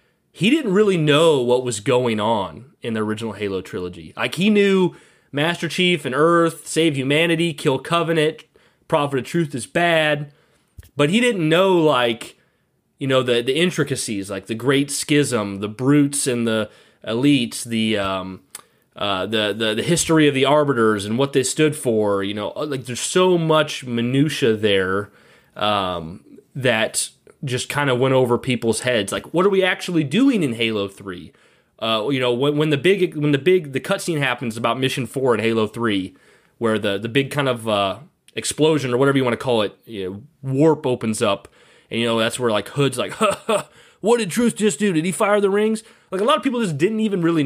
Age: 30-49